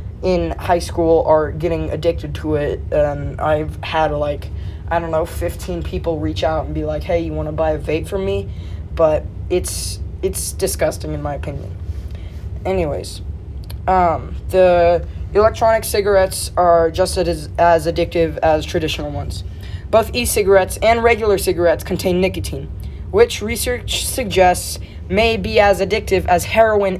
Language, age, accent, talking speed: English, 20-39, American, 150 wpm